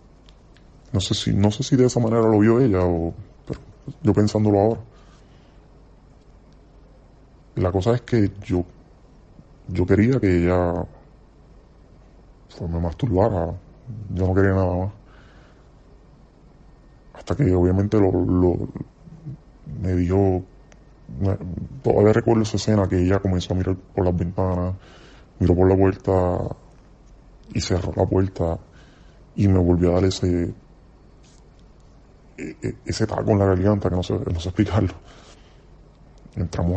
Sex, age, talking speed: female, 20-39, 130 wpm